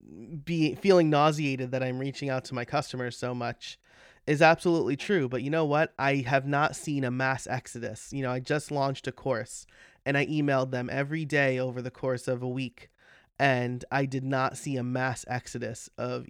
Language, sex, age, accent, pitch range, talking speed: English, male, 30-49, American, 125-155 Hz, 200 wpm